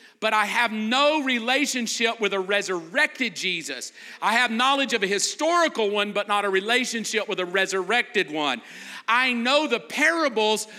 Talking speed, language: 155 wpm, English